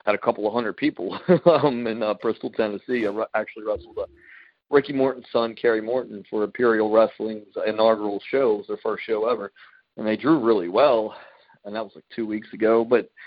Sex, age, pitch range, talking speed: male, 40-59, 105-130 Hz, 200 wpm